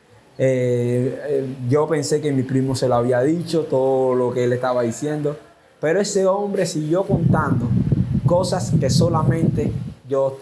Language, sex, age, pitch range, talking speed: Spanish, male, 20-39, 125-145 Hz, 150 wpm